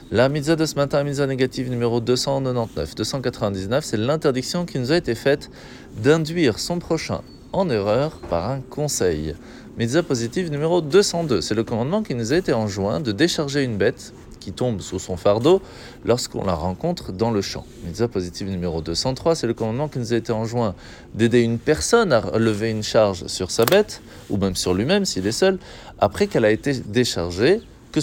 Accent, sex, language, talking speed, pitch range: French, male, French, 185 wpm, 105-150 Hz